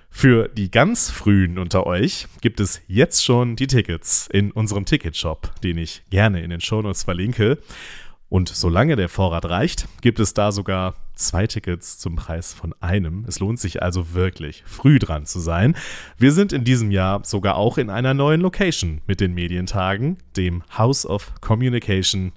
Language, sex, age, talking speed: German, male, 30-49, 170 wpm